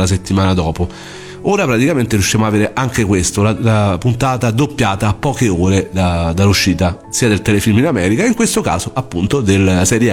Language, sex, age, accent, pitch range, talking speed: Italian, male, 40-59, native, 95-120 Hz, 170 wpm